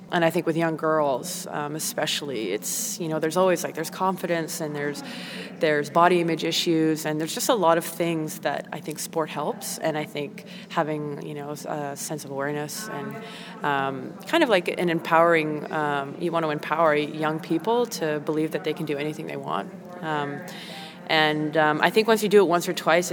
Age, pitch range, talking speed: 20-39, 155-185 Hz, 200 wpm